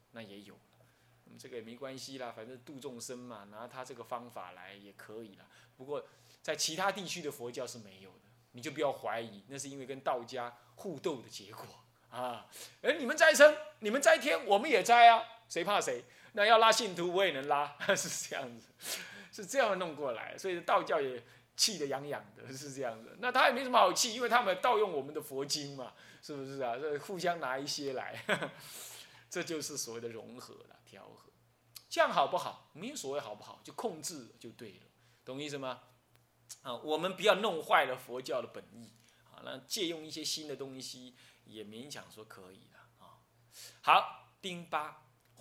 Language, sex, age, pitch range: Chinese, male, 20-39, 120-165 Hz